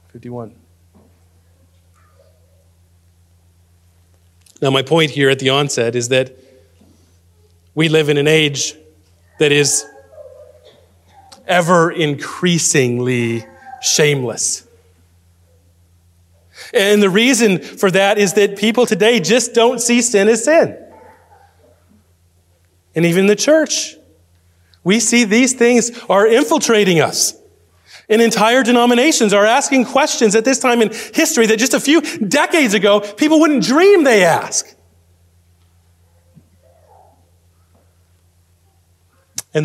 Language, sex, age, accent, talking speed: English, male, 30-49, American, 105 wpm